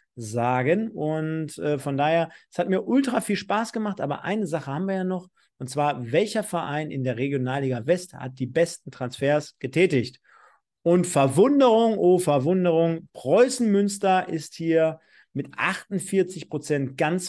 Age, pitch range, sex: 40-59, 150-195 Hz, male